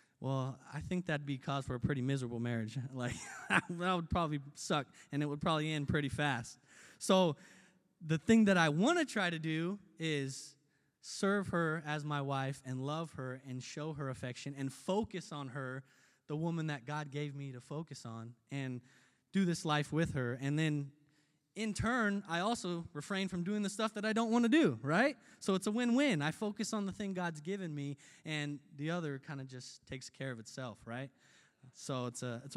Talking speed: 205 wpm